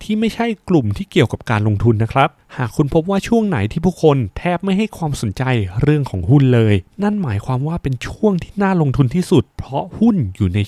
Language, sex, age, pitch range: Thai, male, 20-39, 110-160 Hz